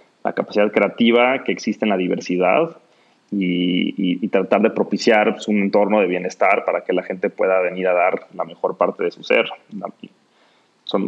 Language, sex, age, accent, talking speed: Spanish, male, 30-49, Mexican, 185 wpm